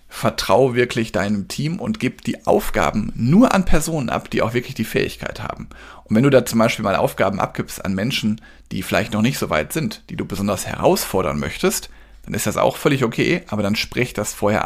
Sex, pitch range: male, 105-130 Hz